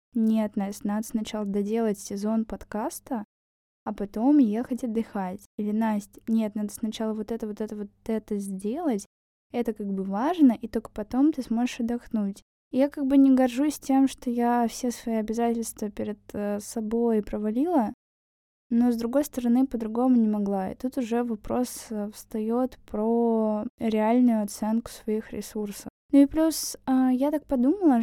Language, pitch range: Russian, 220-250 Hz